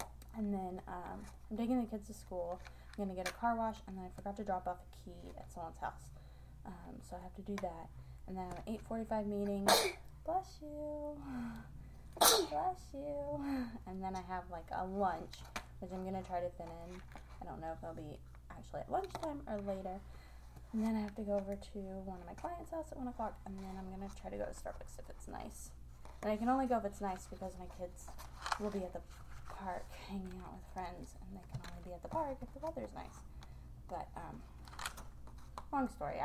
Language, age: English, 20-39